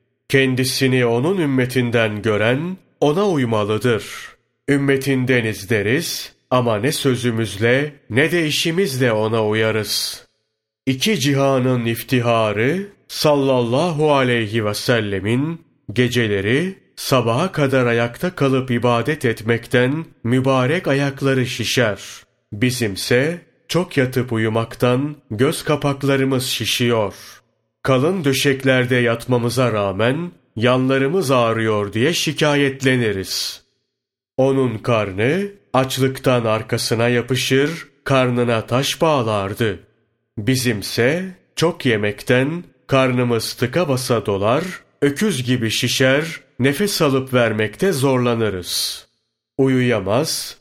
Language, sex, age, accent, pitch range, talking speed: Turkish, male, 30-49, native, 115-140 Hz, 85 wpm